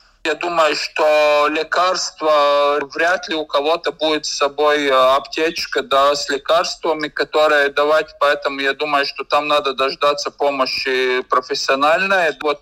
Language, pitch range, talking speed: Russian, 145-165 Hz, 130 wpm